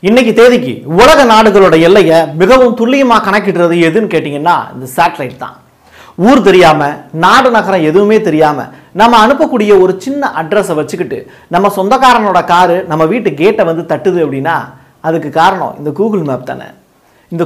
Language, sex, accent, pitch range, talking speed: Tamil, male, native, 160-220 Hz, 140 wpm